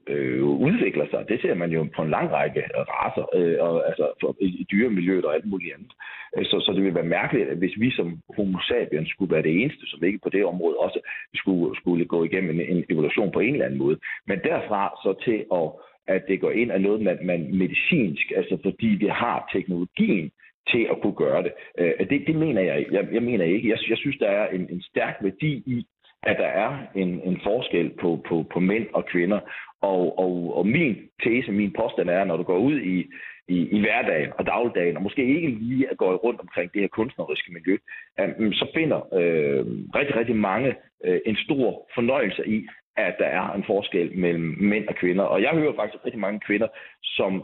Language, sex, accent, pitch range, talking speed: Danish, male, native, 90-120 Hz, 210 wpm